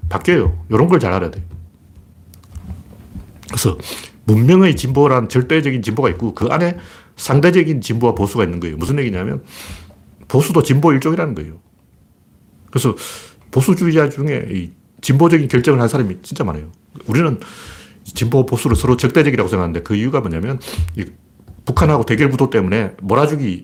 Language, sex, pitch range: Korean, male, 90-140 Hz